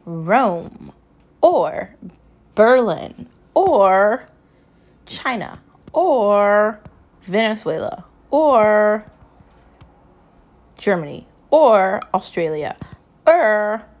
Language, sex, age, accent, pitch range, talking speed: English, female, 20-39, American, 180-230 Hz, 50 wpm